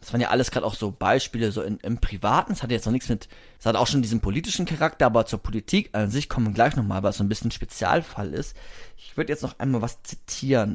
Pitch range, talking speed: 115-170 Hz, 270 wpm